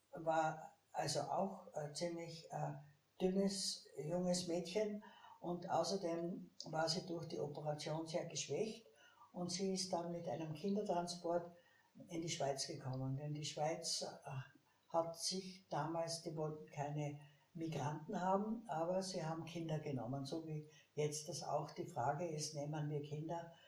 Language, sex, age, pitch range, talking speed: German, female, 60-79, 150-175 Hz, 140 wpm